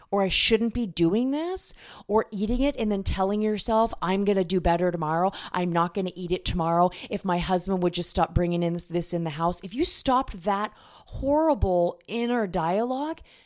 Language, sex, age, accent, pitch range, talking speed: English, female, 30-49, American, 175-250 Hz, 200 wpm